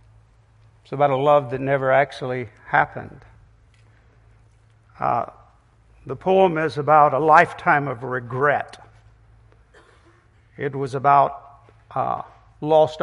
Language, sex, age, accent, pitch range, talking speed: English, male, 50-69, American, 110-160 Hz, 95 wpm